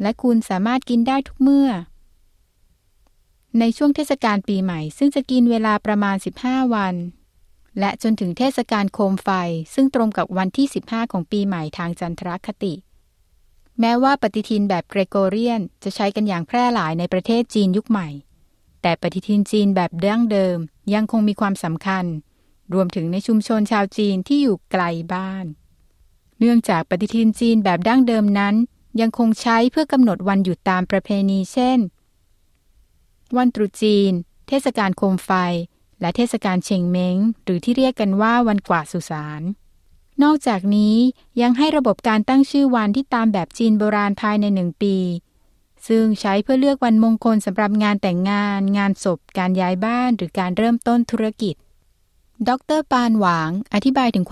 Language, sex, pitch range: Thai, female, 185-230 Hz